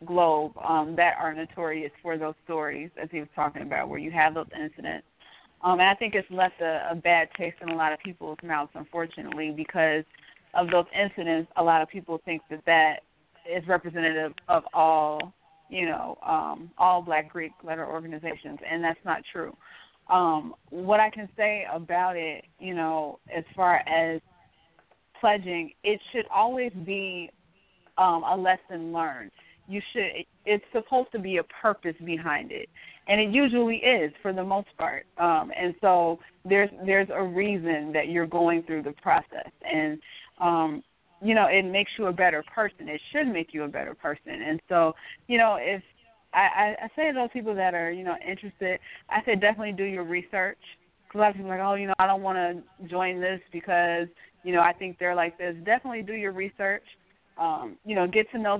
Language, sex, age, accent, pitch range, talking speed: English, female, 20-39, American, 165-200 Hz, 190 wpm